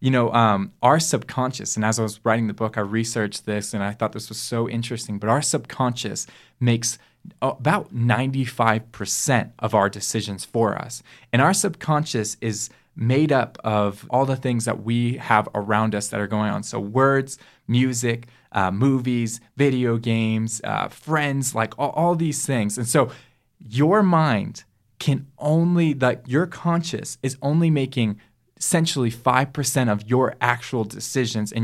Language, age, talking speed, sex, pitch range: English, 20-39, 160 wpm, male, 110-140 Hz